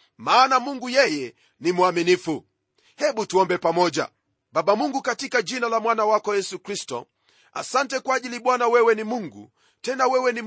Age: 40-59